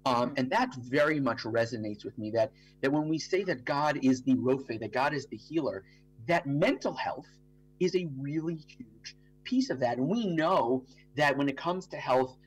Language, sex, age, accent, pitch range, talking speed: English, male, 30-49, American, 125-175 Hz, 200 wpm